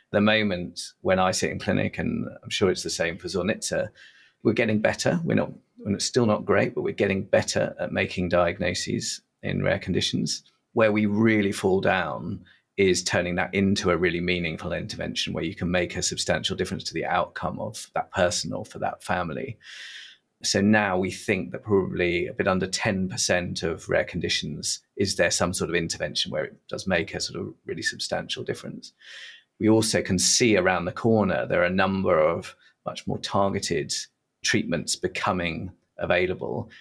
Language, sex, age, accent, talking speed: English, male, 40-59, British, 185 wpm